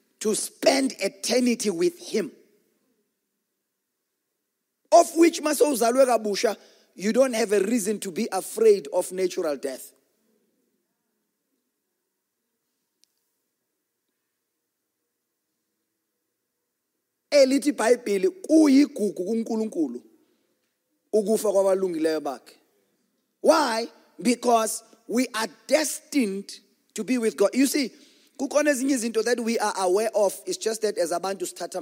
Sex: male